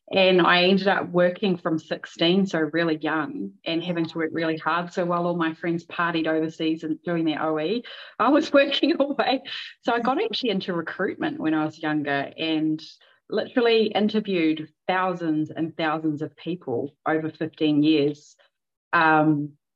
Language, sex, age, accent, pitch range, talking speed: English, female, 30-49, Australian, 155-180 Hz, 165 wpm